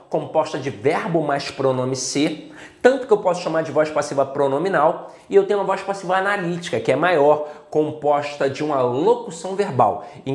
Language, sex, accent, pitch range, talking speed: Portuguese, male, Brazilian, 145-215 Hz, 180 wpm